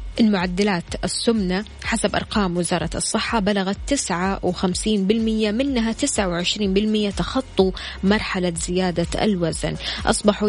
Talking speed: 90 wpm